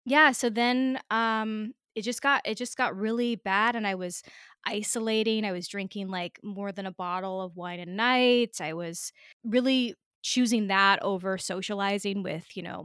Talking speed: 180 wpm